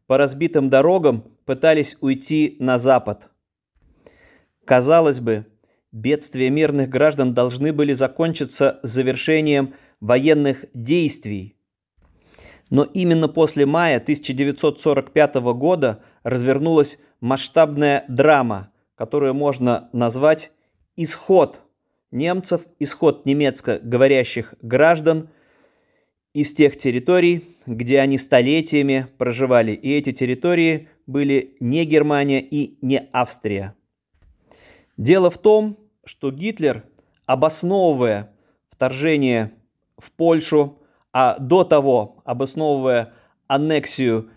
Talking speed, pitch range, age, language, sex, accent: 90 wpm, 125-155 Hz, 30-49, Russian, male, native